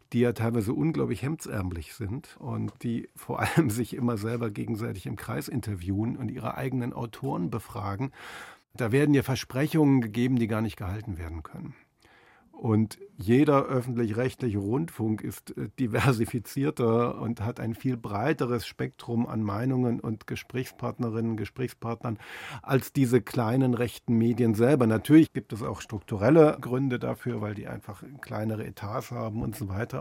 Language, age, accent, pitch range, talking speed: German, 50-69, German, 110-130 Hz, 145 wpm